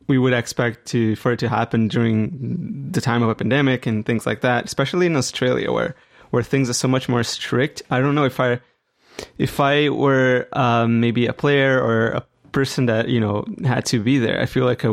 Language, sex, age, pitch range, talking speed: English, male, 20-39, 115-135 Hz, 220 wpm